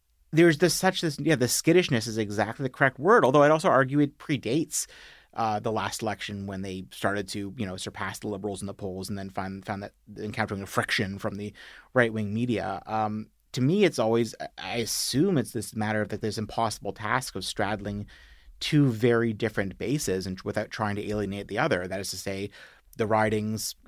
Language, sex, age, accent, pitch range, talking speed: English, male, 30-49, American, 100-120 Hz, 205 wpm